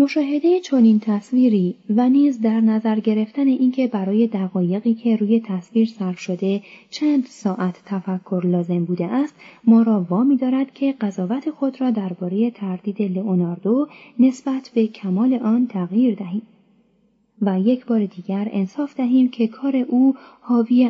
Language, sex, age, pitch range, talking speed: Persian, female, 30-49, 195-255 Hz, 140 wpm